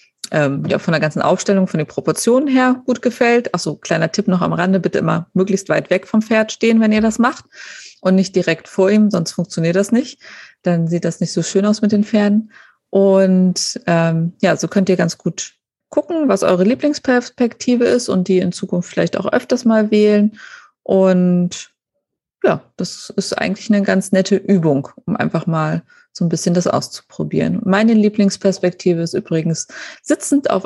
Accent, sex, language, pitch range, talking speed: German, female, German, 175-220 Hz, 180 wpm